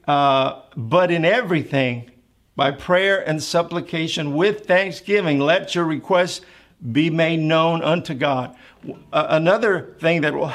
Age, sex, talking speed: 50-69, male, 130 wpm